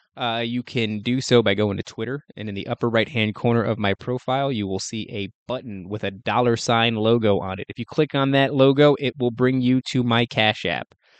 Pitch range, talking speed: 105-125 Hz, 235 wpm